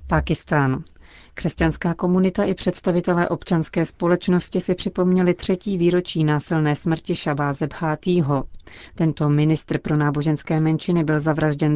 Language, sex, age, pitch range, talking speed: Czech, female, 40-59, 145-165 Hz, 105 wpm